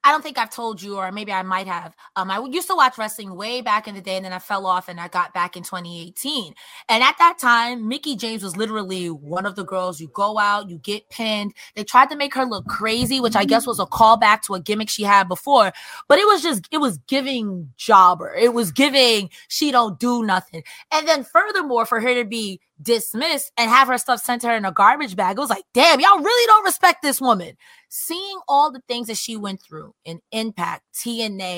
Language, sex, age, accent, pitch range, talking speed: English, female, 20-39, American, 195-280 Hz, 240 wpm